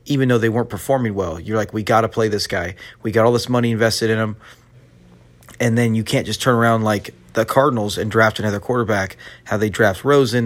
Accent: American